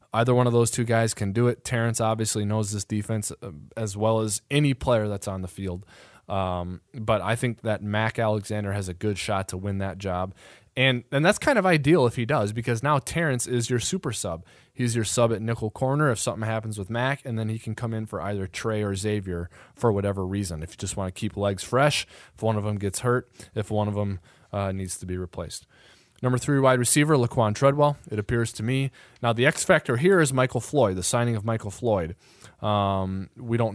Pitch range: 100-120 Hz